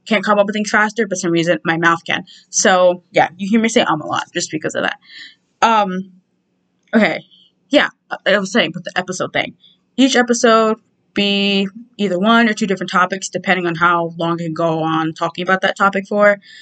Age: 20-39